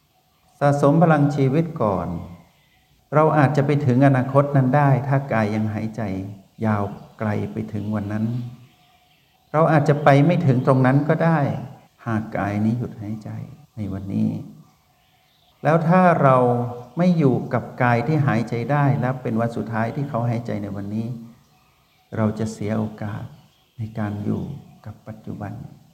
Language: Thai